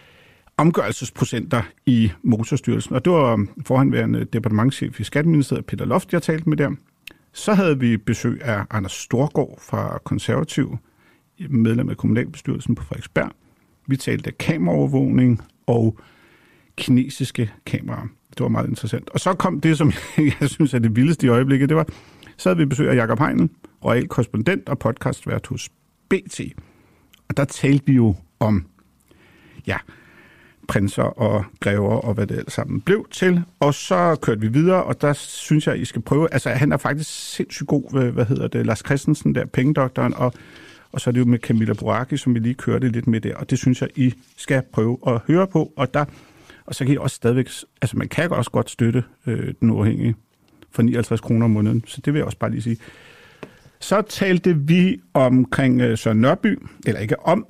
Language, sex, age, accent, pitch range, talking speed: Danish, male, 50-69, native, 115-145 Hz, 185 wpm